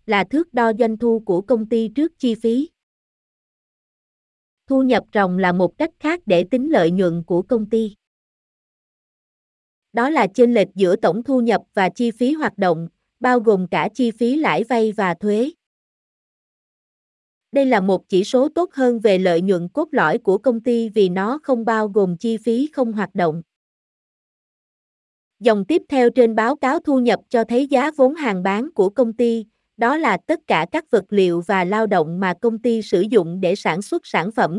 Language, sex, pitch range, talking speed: Vietnamese, female, 195-250 Hz, 190 wpm